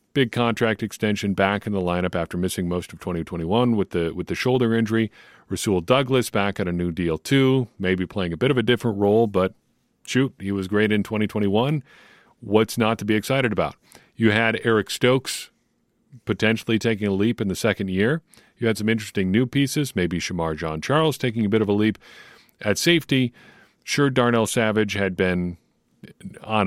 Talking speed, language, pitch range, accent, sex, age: 195 wpm, English, 95-125 Hz, American, male, 40-59